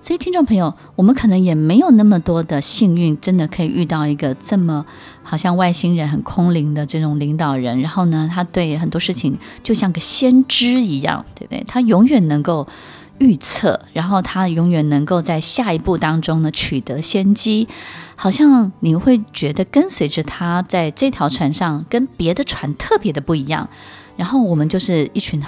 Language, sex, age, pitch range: Chinese, female, 20-39, 150-195 Hz